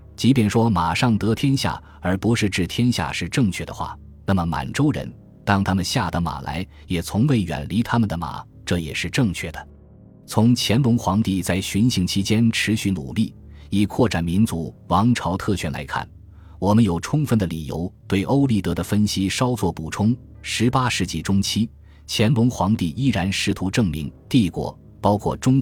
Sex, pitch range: male, 85-115 Hz